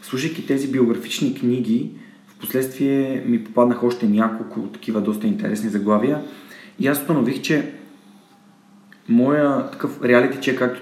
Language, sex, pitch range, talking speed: Bulgarian, male, 115-135 Hz, 130 wpm